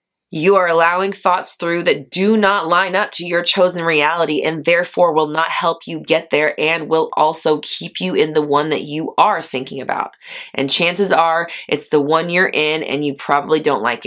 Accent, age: American, 20-39